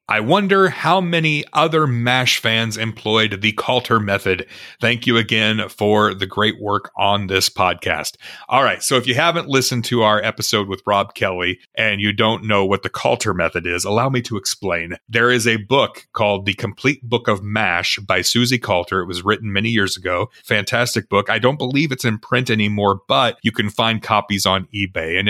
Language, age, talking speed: English, 30-49, 195 wpm